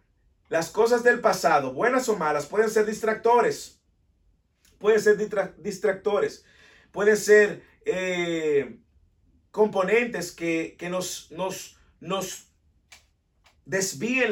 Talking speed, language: 90 wpm, English